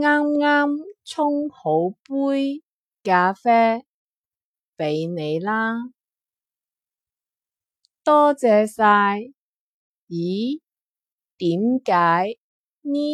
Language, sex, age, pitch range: Chinese, female, 30-49, 180-280 Hz